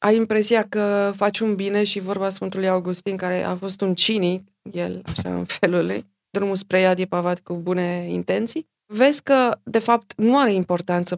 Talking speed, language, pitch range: 180 wpm, Romanian, 180-225 Hz